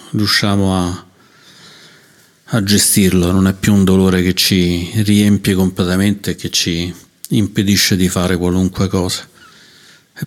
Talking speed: 125 wpm